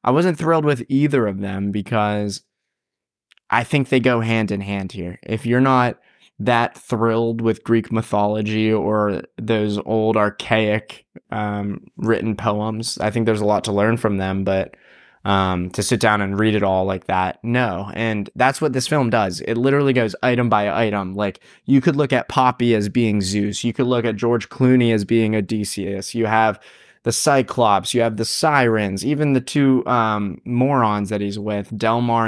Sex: male